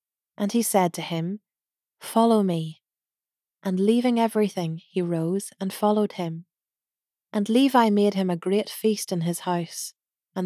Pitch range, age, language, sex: 170-210 Hz, 30-49, English, female